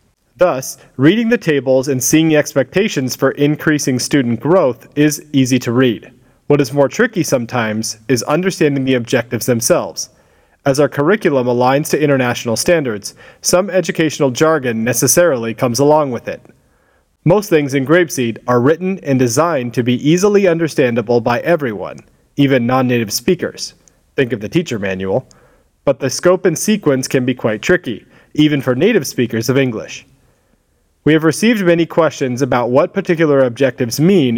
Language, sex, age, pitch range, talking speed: English, male, 40-59, 125-160 Hz, 155 wpm